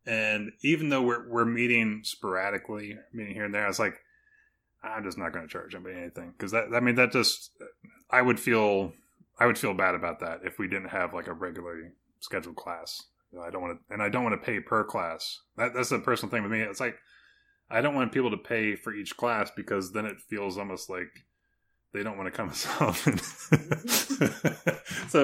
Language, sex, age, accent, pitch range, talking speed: English, male, 20-39, American, 100-125 Hz, 220 wpm